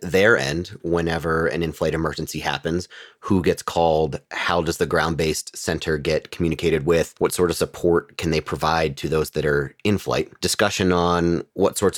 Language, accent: English, American